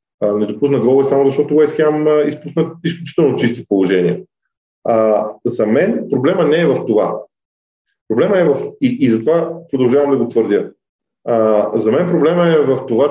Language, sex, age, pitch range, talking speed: Bulgarian, male, 40-59, 115-160 Hz, 155 wpm